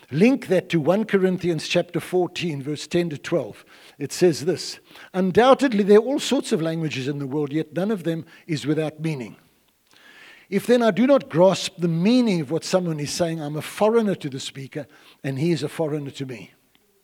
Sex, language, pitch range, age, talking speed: male, English, 160-215 Hz, 60-79, 200 wpm